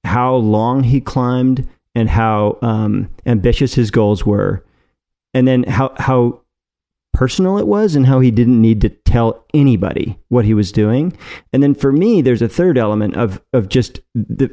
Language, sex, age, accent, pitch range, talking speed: English, male, 40-59, American, 100-125 Hz, 175 wpm